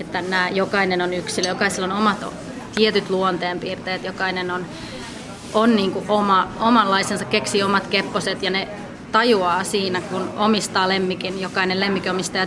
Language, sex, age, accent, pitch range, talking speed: Finnish, female, 20-39, native, 185-205 Hz, 140 wpm